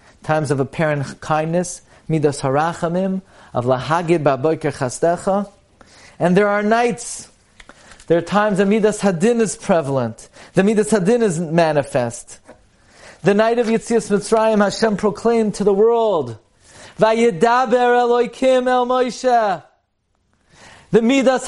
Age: 30-49